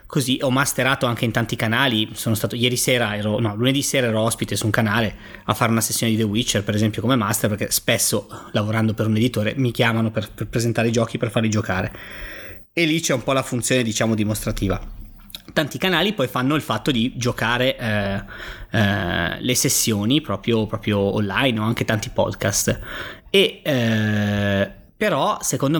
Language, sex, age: Italian, male, 20-39